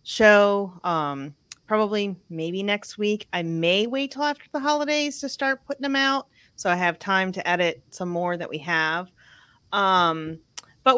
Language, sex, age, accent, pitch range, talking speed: English, female, 30-49, American, 155-190 Hz, 170 wpm